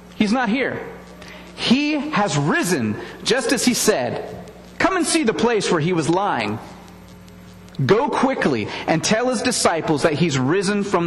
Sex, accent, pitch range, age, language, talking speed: male, American, 140-220 Hz, 40-59, English, 155 wpm